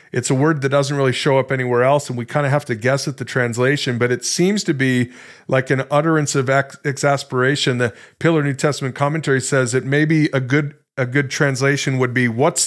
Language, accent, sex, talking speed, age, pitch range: English, American, male, 225 wpm, 40-59, 125-155 Hz